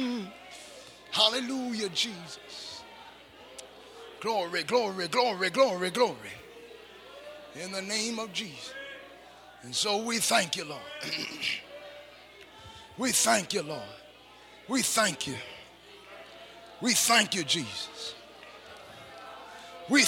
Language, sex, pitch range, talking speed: English, male, 205-275 Hz, 90 wpm